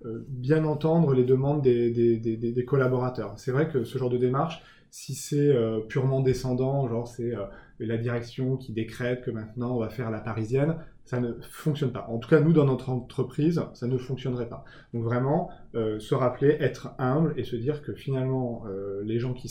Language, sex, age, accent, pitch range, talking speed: French, male, 20-39, French, 115-135 Hz, 195 wpm